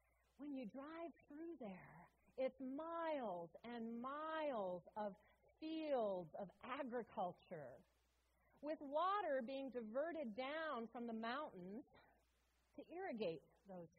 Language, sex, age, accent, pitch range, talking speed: English, female, 40-59, American, 160-225 Hz, 105 wpm